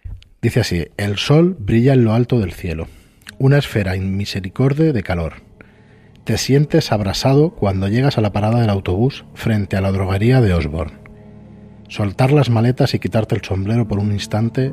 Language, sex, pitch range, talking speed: Spanish, male, 95-125 Hz, 165 wpm